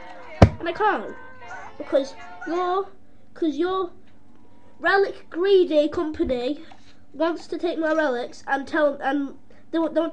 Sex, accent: female, British